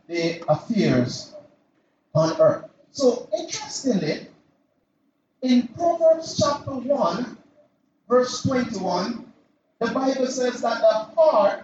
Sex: male